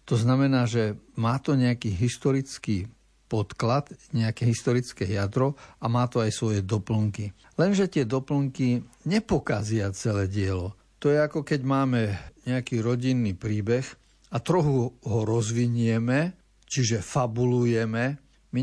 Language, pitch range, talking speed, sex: Slovak, 110-130 Hz, 120 wpm, male